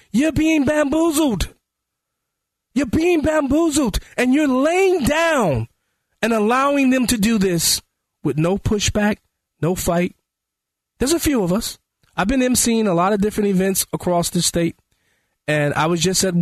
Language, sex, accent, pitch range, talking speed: English, male, American, 140-180 Hz, 155 wpm